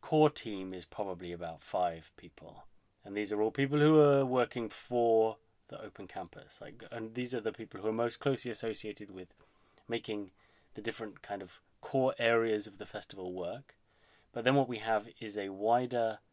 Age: 30-49